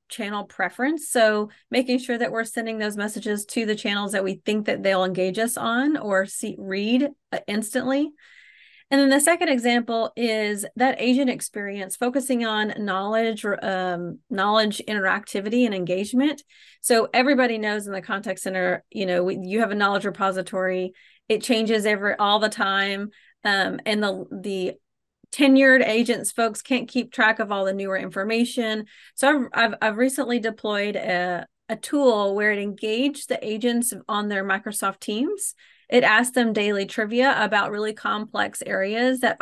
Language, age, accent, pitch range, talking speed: English, 30-49, American, 205-250 Hz, 160 wpm